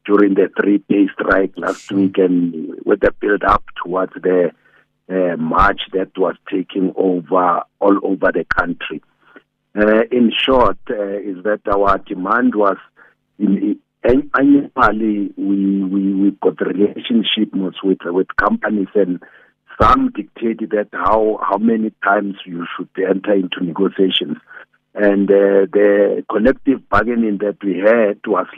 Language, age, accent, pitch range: English, 50-69, South African, 95-105 Hz